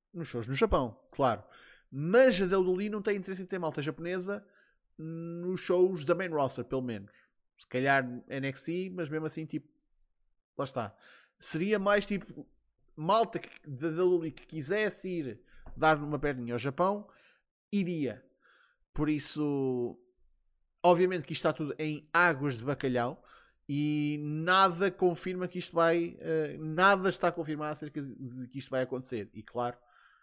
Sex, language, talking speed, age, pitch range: male, Portuguese, 150 wpm, 20-39, 125-180 Hz